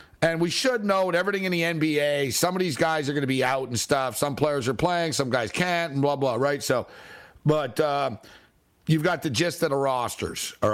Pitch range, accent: 135-175 Hz, American